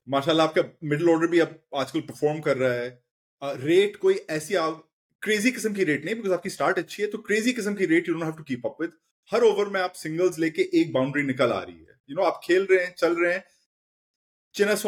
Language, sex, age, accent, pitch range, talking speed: English, male, 30-49, Indian, 145-185 Hz, 135 wpm